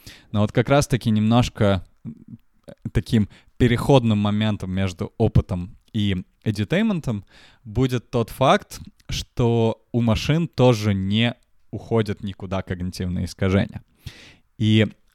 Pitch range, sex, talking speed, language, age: 95-115 Hz, male, 100 wpm, Russian, 20-39